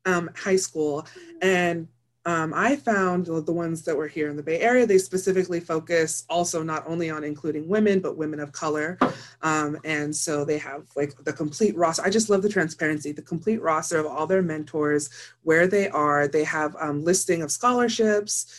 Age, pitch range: 30-49, 150-175 Hz